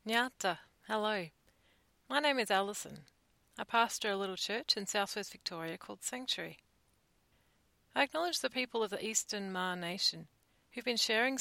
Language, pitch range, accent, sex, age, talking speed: English, 180-240 Hz, Australian, female, 40-59, 155 wpm